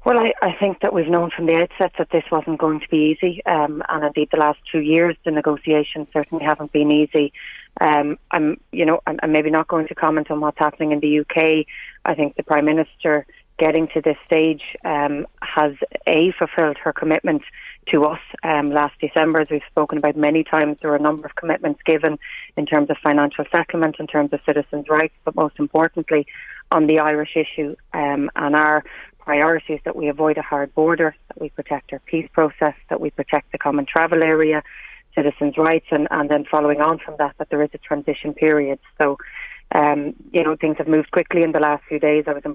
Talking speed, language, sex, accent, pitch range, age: 215 wpm, English, female, Irish, 150-160 Hz, 30-49